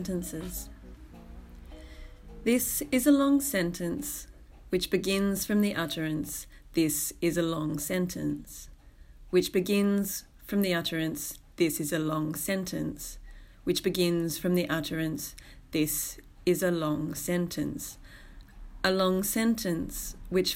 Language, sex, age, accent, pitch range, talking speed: English, female, 30-49, Australian, 160-195 Hz, 115 wpm